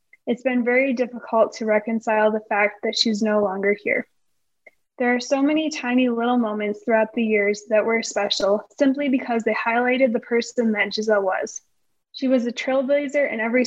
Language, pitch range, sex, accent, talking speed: English, 220-255 Hz, female, American, 180 wpm